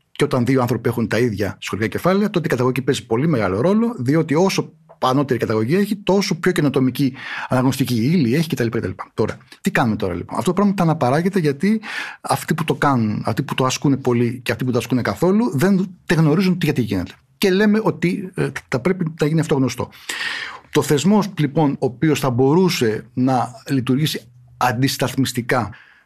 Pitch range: 115-155 Hz